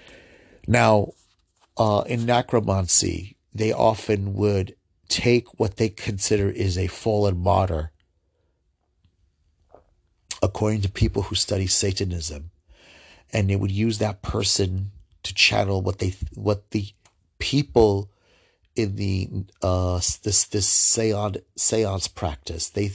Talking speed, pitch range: 110 wpm, 90-105 Hz